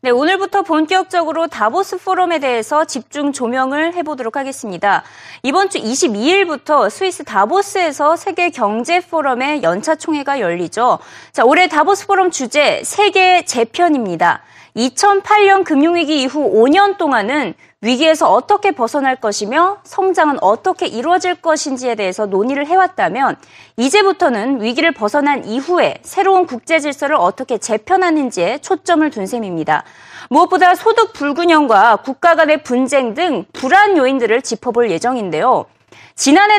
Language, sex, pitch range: Korean, female, 245-360 Hz